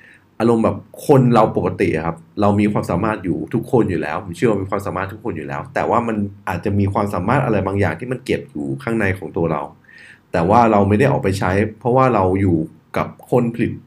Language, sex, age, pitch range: Thai, male, 20-39, 90-115 Hz